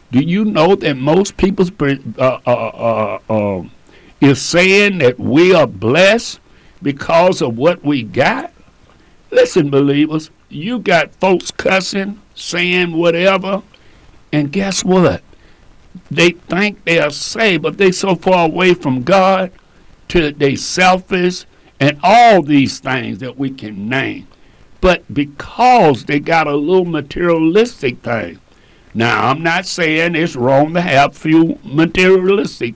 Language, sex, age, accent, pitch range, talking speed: English, male, 60-79, American, 130-180 Hz, 135 wpm